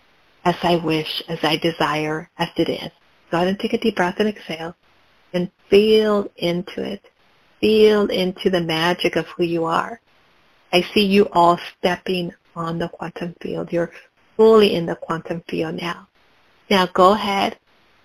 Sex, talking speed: female, 165 wpm